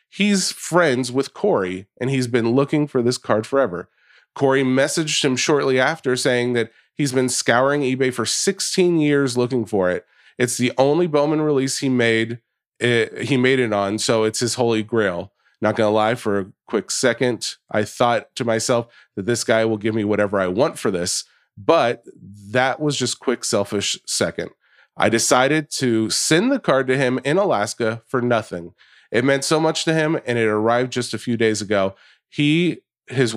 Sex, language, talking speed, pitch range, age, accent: male, English, 185 wpm, 110-135 Hz, 30-49, American